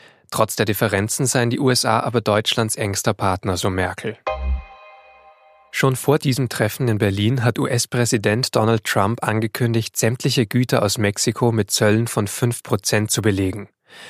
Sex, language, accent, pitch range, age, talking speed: male, German, German, 105-120 Hz, 20-39, 140 wpm